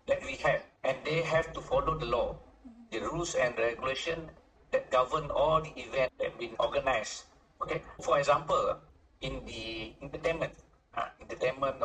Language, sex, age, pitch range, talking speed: English, male, 50-69, 130-185 Hz, 155 wpm